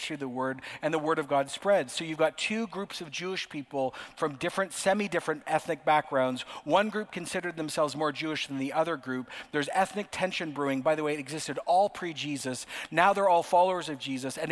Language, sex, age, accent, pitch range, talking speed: English, male, 40-59, American, 150-195 Hz, 205 wpm